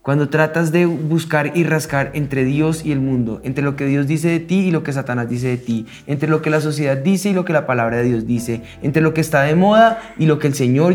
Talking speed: 275 wpm